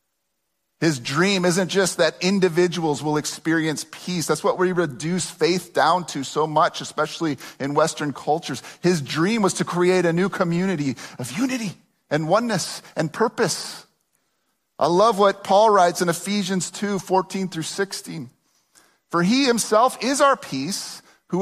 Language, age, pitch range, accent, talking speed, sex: English, 40-59, 170-240 Hz, American, 150 wpm, male